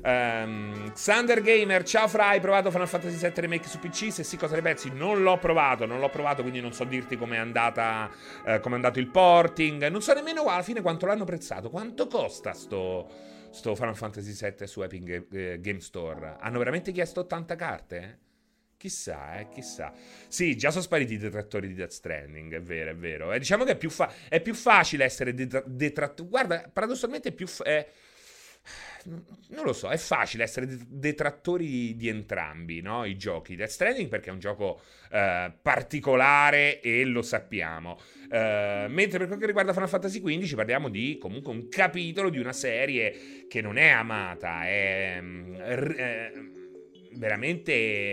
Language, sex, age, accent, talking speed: Italian, male, 30-49, native, 180 wpm